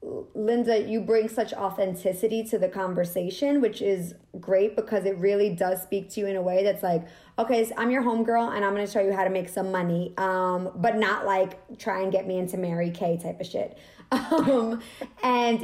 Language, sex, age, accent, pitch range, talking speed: English, female, 20-39, American, 195-255 Hz, 210 wpm